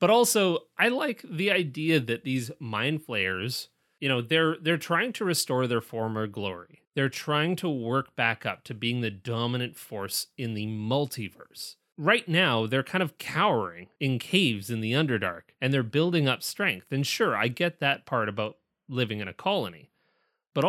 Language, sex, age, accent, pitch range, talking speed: English, male, 30-49, American, 120-160 Hz, 180 wpm